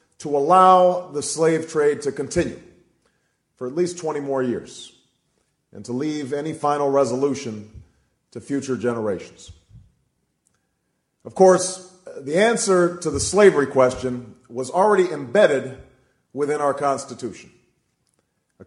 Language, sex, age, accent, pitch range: Chinese, male, 40-59, American, 125-165 Hz